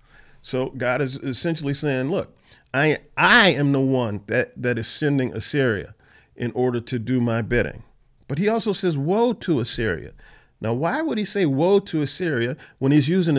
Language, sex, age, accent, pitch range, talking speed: English, male, 40-59, American, 120-160 Hz, 180 wpm